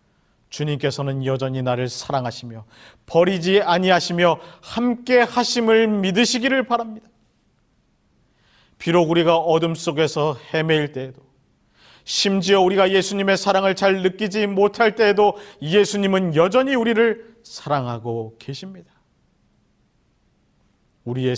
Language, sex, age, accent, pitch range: Korean, male, 40-59, native, 135-195 Hz